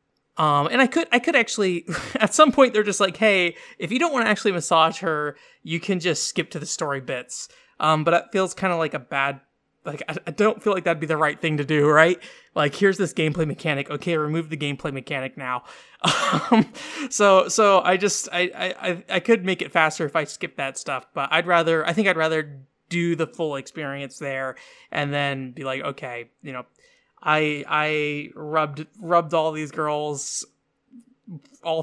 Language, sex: English, male